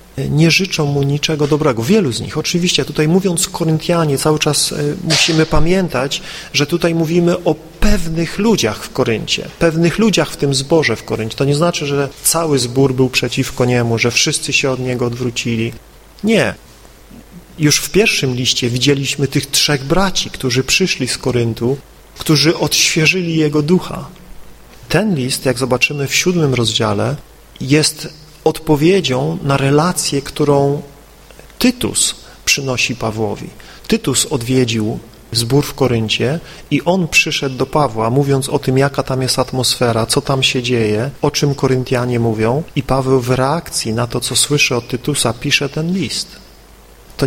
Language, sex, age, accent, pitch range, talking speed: Polish, male, 40-59, native, 125-160 Hz, 150 wpm